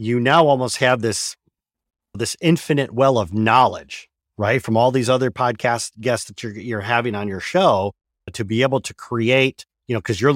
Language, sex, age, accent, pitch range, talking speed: English, male, 40-59, American, 100-125 Hz, 190 wpm